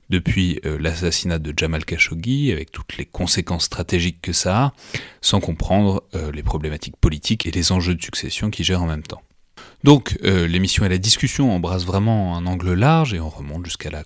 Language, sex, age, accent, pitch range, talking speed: French, male, 30-49, French, 80-95 Hz, 195 wpm